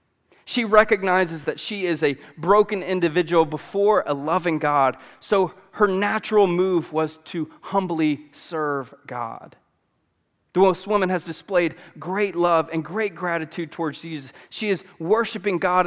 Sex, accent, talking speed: male, American, 140 wpm